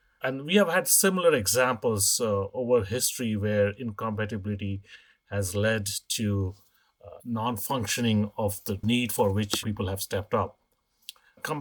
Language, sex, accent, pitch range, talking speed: English, male, Indian, 105-130 Hz, 135 wpm